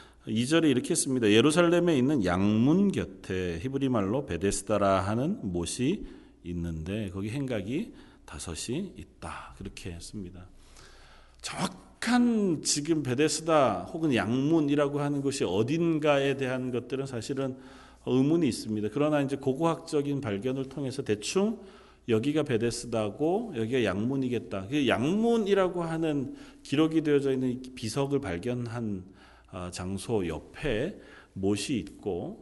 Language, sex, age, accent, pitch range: Korean, male, 40-59, native, 105-145 Hz